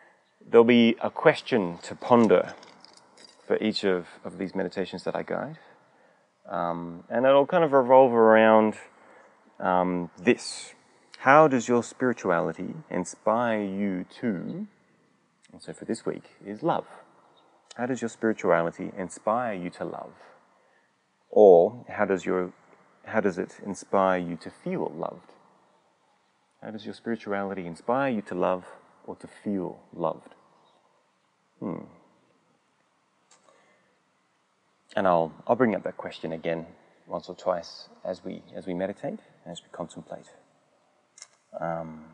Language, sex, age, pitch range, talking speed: English, male, 30-49, 95-150 Hz, 130 wpm